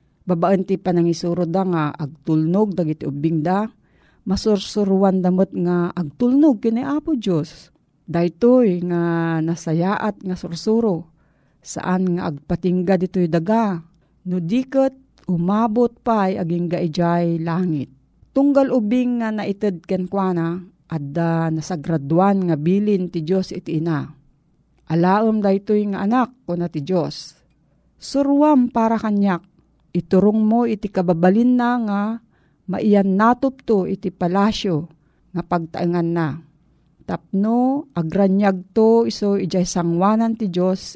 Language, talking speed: Filipino, 115 wpm